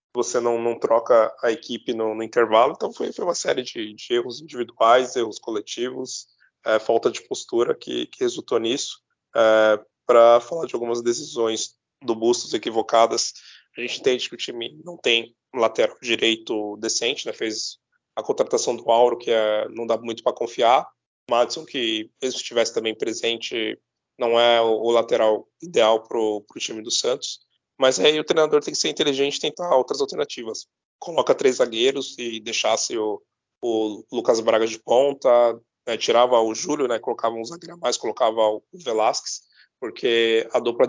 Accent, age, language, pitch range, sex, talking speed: Brazilian, 20-39, Portuguese, 115-145 Hz, male, 175 wpm